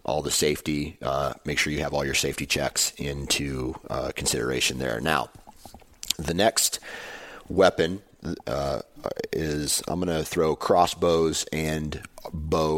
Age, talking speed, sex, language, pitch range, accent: 30-49, 135 wpm, male, English, 75-85 Hz, American